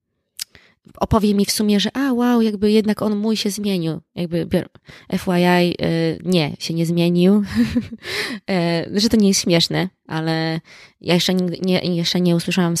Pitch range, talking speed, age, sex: 160-190 Hz, 170 wpm, 20-39, female